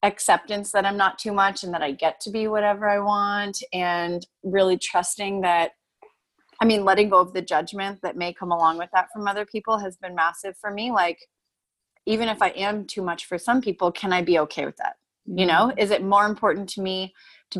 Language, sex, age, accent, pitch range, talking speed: English, female, 30-49, American, 180-220 Hz, 220 wpm